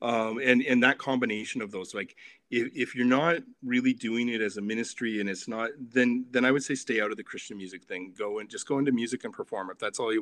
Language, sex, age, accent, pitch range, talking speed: English, male, 30-49, American, 110-145 Hz, 265 wpm